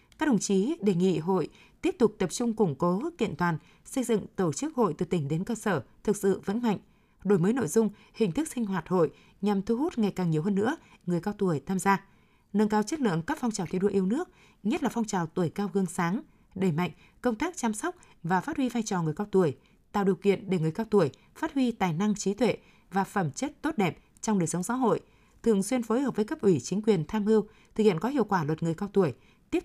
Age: 20-39